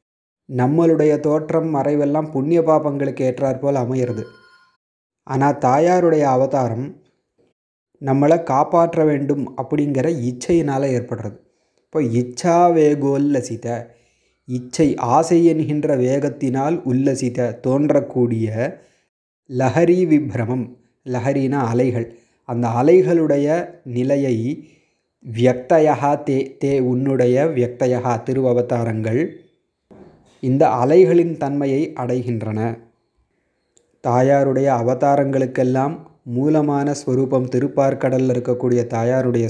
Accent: native